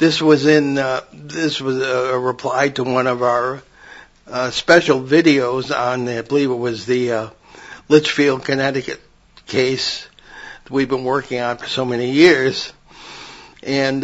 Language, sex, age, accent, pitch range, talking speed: English, male, 60-79, American, 130-150 Hz, 145 wpm